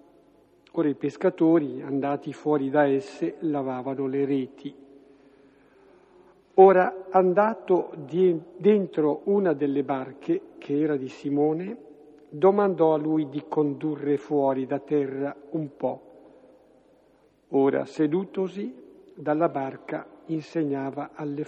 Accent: native